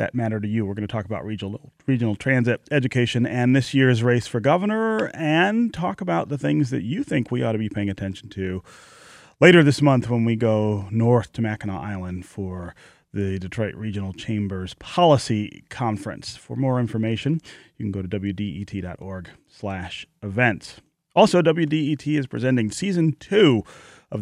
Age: 30-49